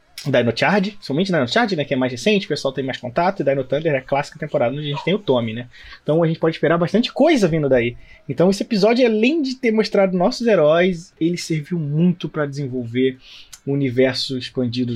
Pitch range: 130-185 Hz